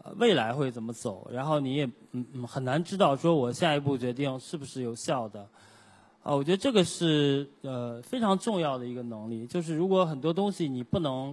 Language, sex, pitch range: Chinese, male, 125-180 Hz